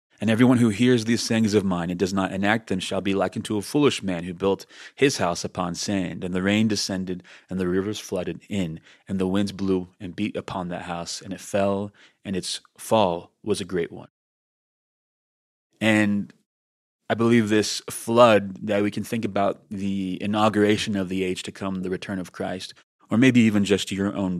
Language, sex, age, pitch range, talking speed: English, male, 30-49, 90-105 Hz, 200 wpm